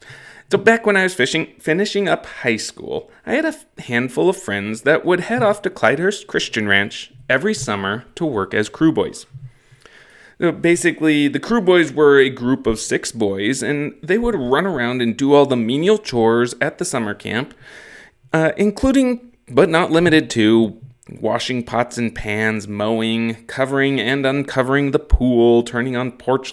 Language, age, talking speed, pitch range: English, 20-39, 175 wpm, 110-145 Hz